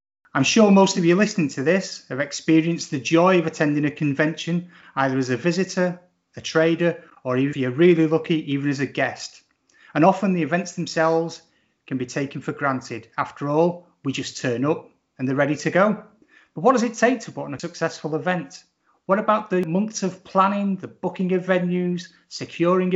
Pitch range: 135-180 Hz